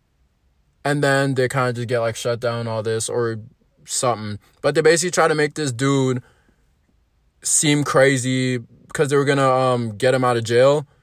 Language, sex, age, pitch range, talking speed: English, male, 20-39, 110-135 Hz, 185 wpm